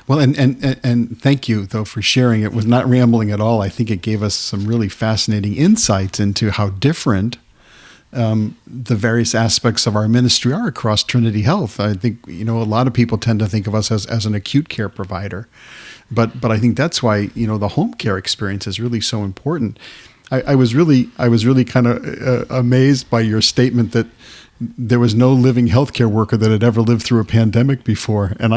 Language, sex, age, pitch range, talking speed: English, male, 50-69, 105-125 Hz, 215 wpm